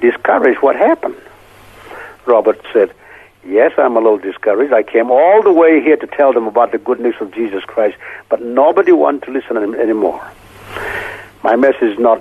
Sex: male